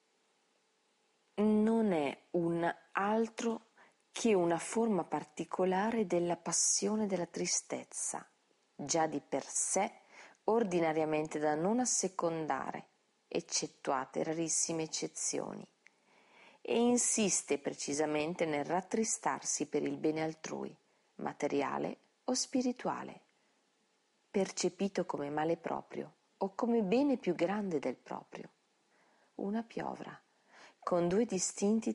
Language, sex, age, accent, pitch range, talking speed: Italian, female, 40-59, native, 155-205 Hz, 95 wpm